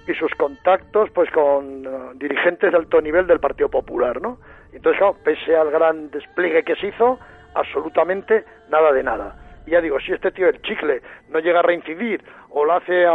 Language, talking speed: Spanish, 195 wpm